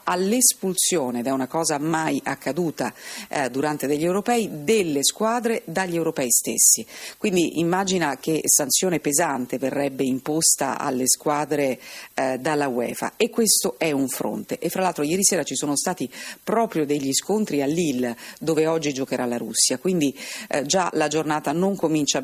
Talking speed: 155 wpm